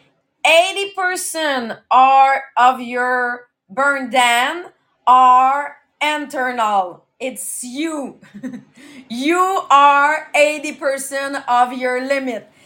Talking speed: 70 wpm